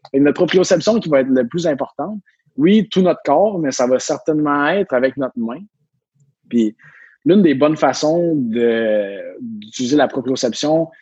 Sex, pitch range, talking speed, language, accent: male, 125-160 Hz, 165 wpm, French, Canadian